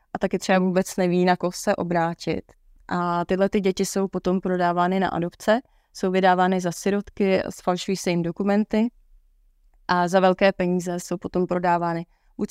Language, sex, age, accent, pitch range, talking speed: Czech, female, 20-39, native, 180-195 Hz, 165 wpm